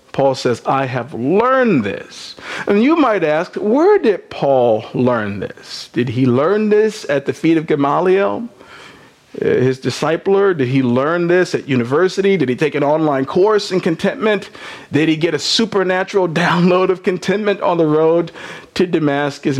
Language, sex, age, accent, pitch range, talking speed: English, male, 50-69, American, 140-185 Hz, 160 wpm